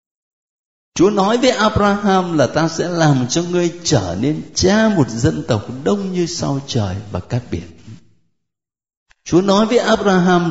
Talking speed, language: 155 wpm, Vietnamese